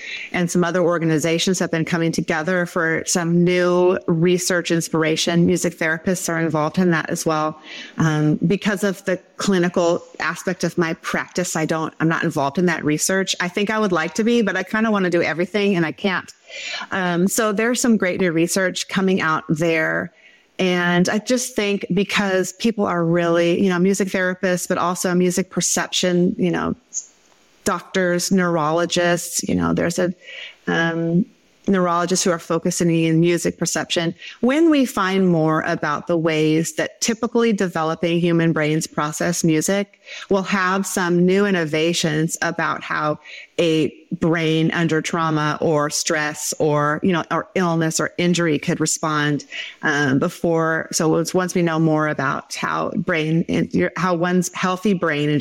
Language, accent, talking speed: English, American, 160 wpm